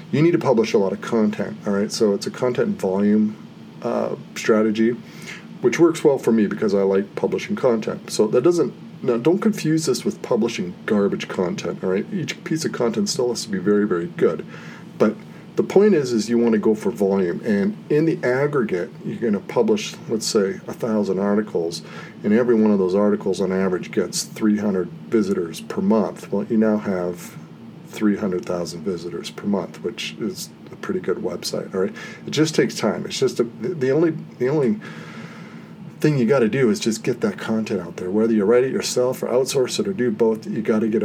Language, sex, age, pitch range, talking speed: English, male, 40-59, 105-175 Hz, 205 wpm